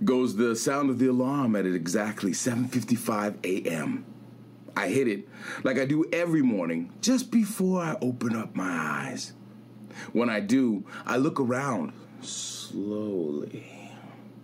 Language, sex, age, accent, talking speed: English, male, 40-59, American, 135 wpm